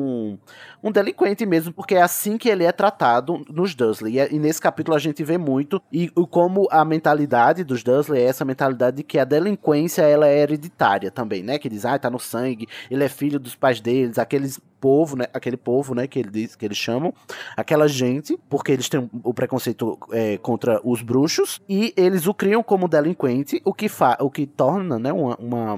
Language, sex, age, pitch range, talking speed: Portuguese, male, 20-39, 130-170 Hz, 205 wpm